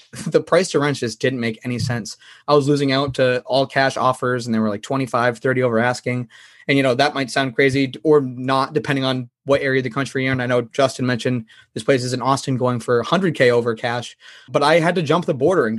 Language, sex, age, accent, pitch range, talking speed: English, male, 20-39, American, 120-140 Hz, 250 wpm